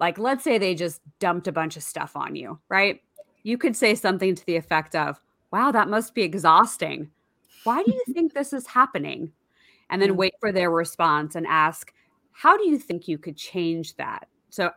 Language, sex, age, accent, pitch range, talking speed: English, female, 20-39, American, 170-235 Hz, 205 wpm